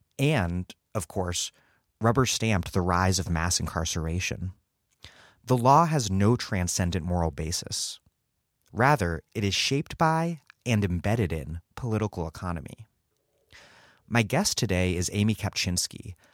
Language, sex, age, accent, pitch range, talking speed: English, male, 30-49, American, 85-115 Hz, 120 wpm